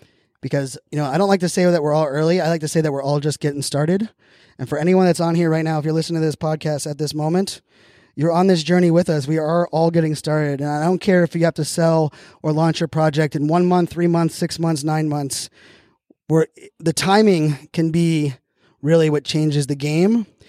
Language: English